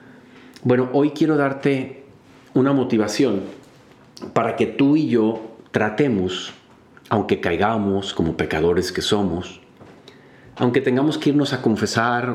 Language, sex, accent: Spanish, male, Mexican